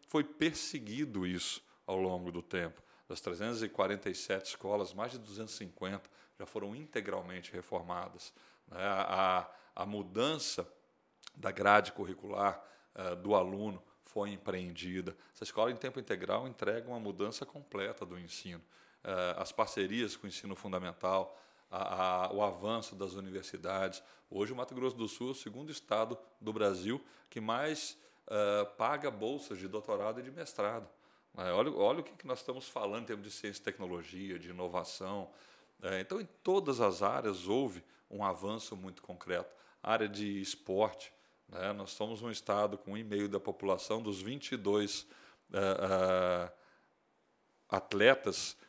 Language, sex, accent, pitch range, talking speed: Portuguese, male, Brazilian, 95-110 Hz, 145 wpm